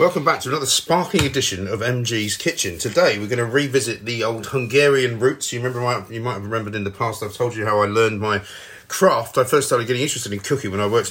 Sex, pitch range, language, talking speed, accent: male, 105-130 Hz, English, 240 wpm, British